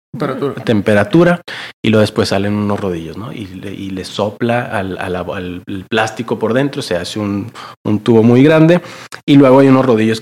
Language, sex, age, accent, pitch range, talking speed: Spanish, male, 30-49, Mexican, 100-135 Hz, 190 wpm